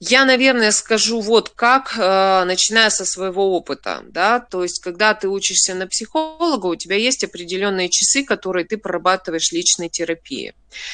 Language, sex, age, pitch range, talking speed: Russian, female, 20-39, 180-225 Hz, 150 wpm